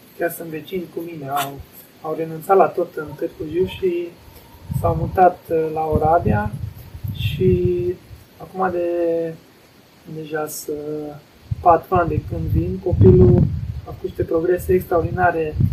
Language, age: Romanian, 20-39